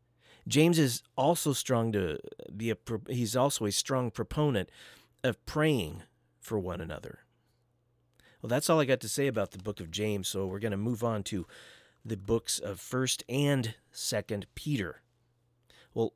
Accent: American